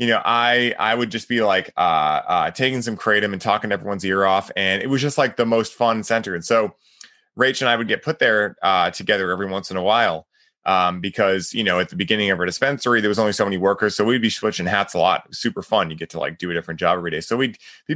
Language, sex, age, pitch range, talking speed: English, male, 20-39, 100-120 Hz, 275 wpm